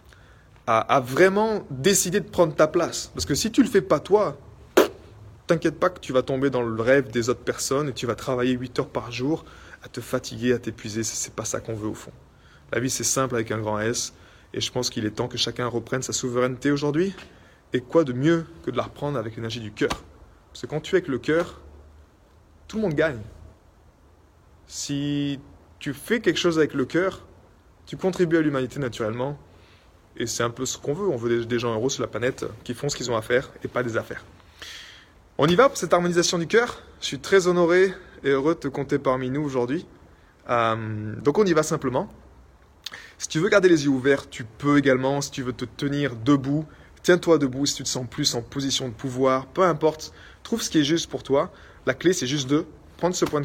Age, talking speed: 20-39, 225 wpm